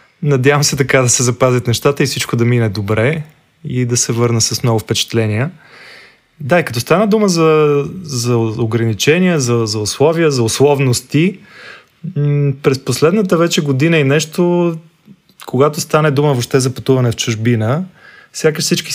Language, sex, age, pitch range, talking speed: Bulgarian, male, 20-39, 120-145 Hz, 155 wpm